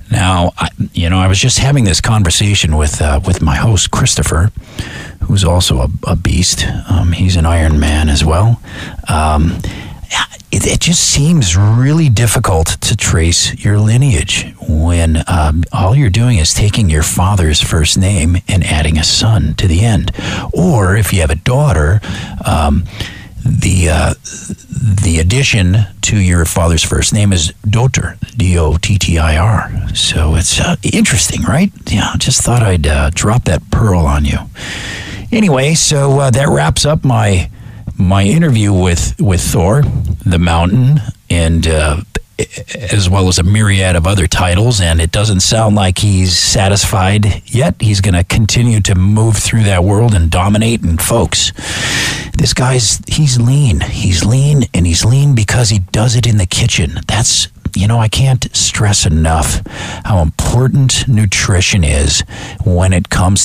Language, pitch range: English, 85-110 Hz